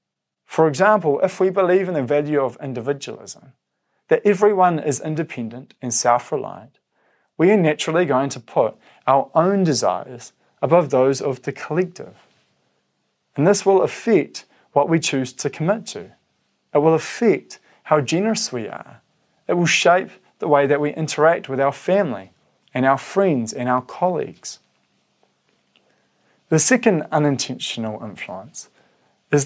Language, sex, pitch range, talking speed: English, male, 130-170 Hz, 140 wpm